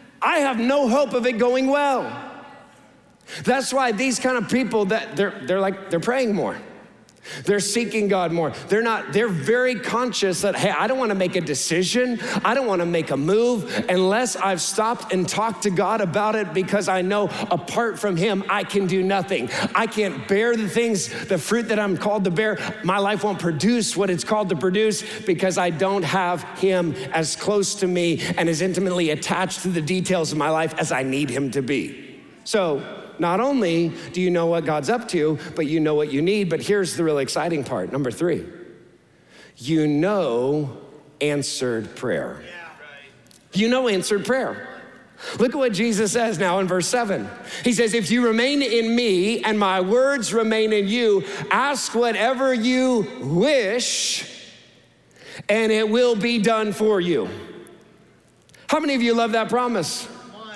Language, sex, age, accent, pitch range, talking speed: English, male, 50-69, American, 180-235 Hz, 180 wpm